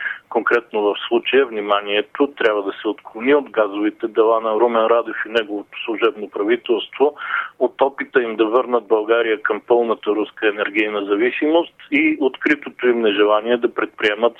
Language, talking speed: Bulgarian, 145 wpm